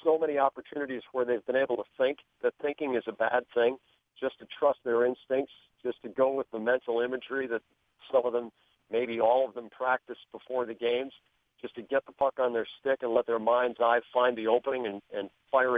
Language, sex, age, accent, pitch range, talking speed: English, male, 50-69, American, 120-145 Hz, 220 wpm